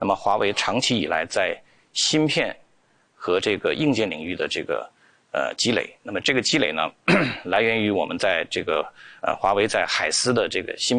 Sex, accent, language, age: male, native, Chinese, 50-69